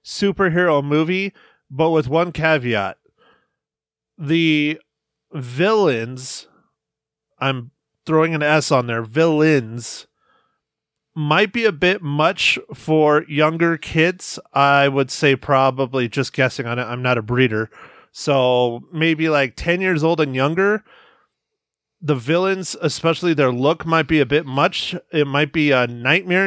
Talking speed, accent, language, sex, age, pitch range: 130 wpm, American, English, male, 30-49, 140-185 Hz